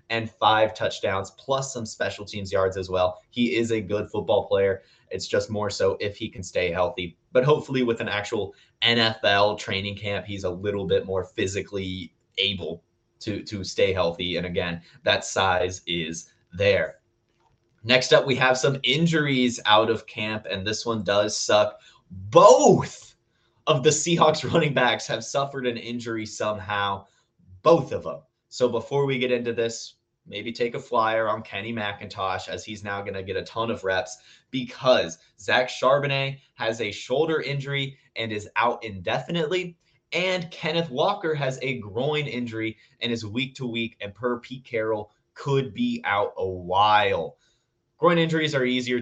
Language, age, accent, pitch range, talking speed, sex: English, 20-39, American, 105-135 Hz, 170 wpm, male